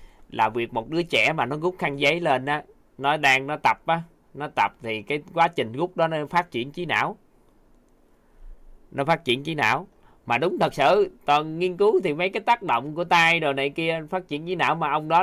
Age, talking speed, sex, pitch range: 20-39, 235 wpm, male, 120-160 Hz